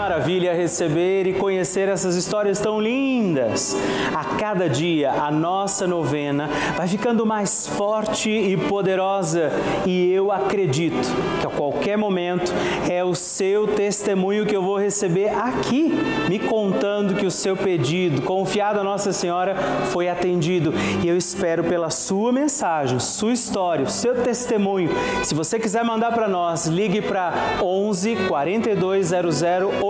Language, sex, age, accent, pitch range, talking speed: Portuguese, male, 30-49, Brazilian, 170-210 Hz, 135 wpm